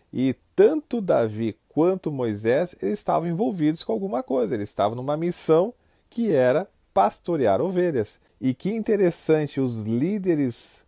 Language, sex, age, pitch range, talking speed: Portuguese, male, 40-59, 115-170 Hz, 130 wpm